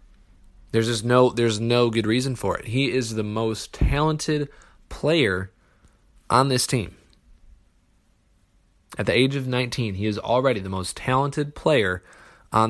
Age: 20-39